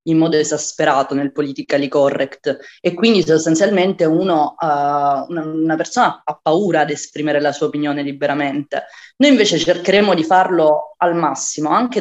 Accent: native